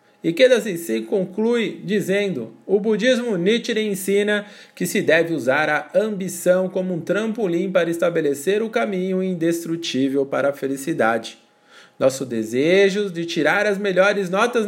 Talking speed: 135 wpm